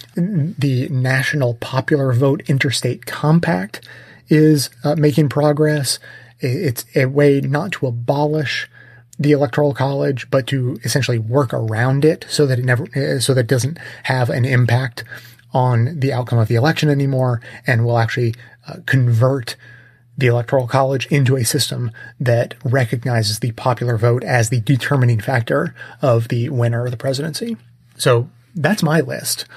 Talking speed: 145 wpm